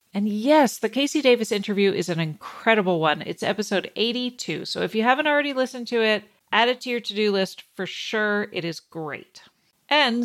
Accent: American